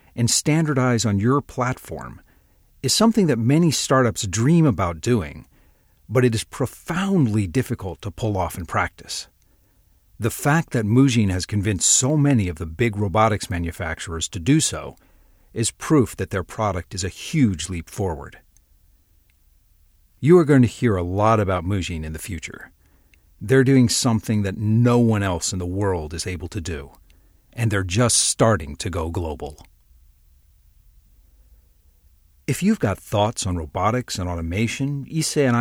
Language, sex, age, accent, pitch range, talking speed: English, male, 50-69, American, 85-120 Hz, 155 wpm